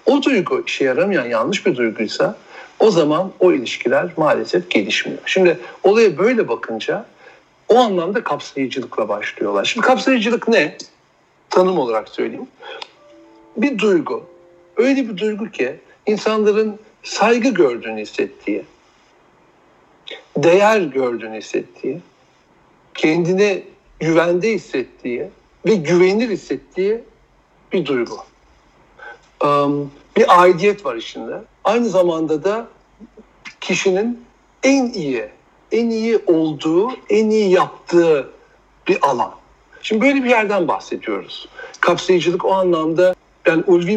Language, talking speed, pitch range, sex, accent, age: Turkish, 105 wpm, 160-235 Hz, male, native, 60-79